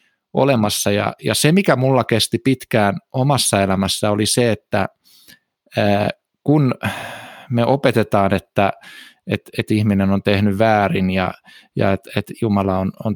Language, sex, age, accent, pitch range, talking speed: Finnish, male, 20-39, native, 105-130 Hz, 140 wpm